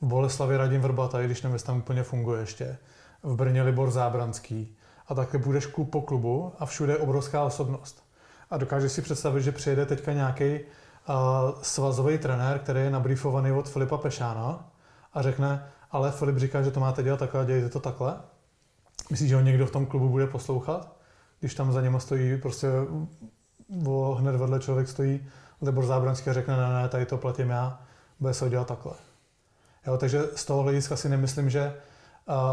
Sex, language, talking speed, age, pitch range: male, Czech, 180 wpm, 20-39, 130-145 Hz